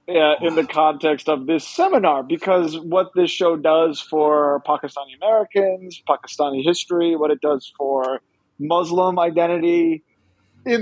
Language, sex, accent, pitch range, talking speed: English, male, American, 150-185 Hz, 135 wpm